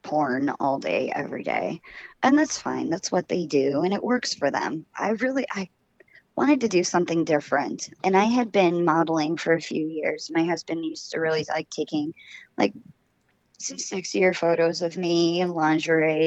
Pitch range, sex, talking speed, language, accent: 155-195 Hz, male, 180 wpm, English, American